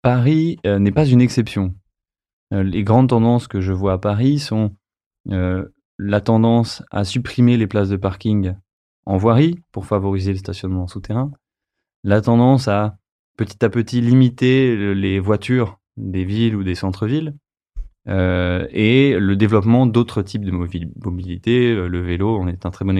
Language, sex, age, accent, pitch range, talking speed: French, male, 20-39, French, 95-115 Hz, 155 wpm